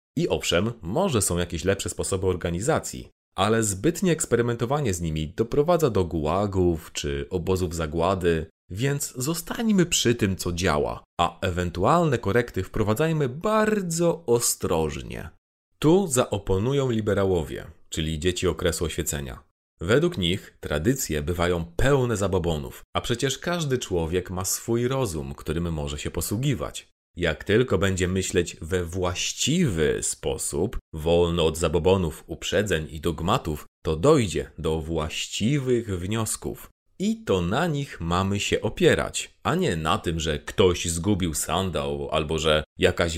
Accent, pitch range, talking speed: native, 85-115 Hz, 125 wpm